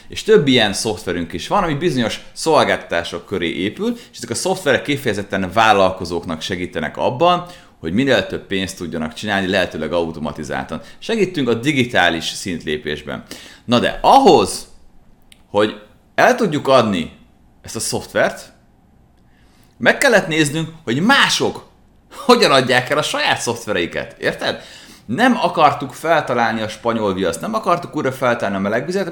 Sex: male